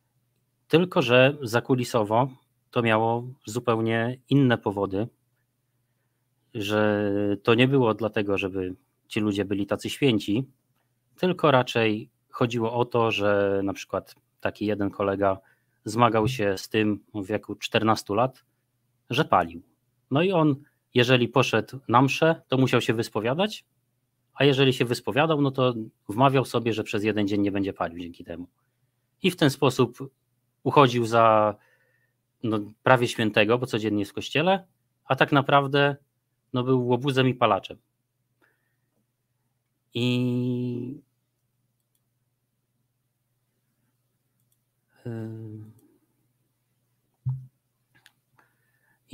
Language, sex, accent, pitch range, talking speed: Polish, male, native, 110-130 Hz, 110 wpm